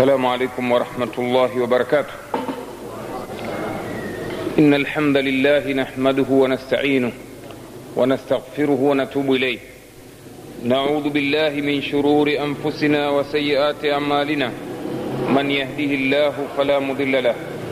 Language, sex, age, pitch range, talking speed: Swahili, male, 50-69, 125-145 Hz, 90 wpm